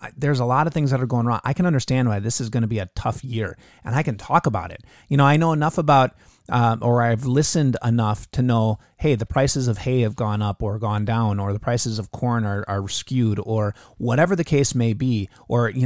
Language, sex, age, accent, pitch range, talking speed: English, male, 30-49, American, 115-155 Hz, 255 wpm